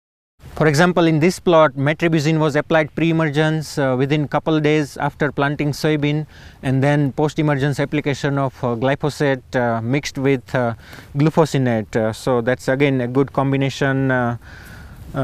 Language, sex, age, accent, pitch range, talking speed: English, male, 30-49, Indian, 125-145 Hz, 140 wpm